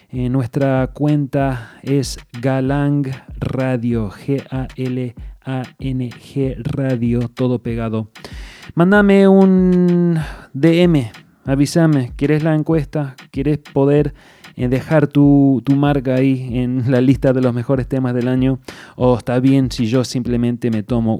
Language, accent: English, Argentinian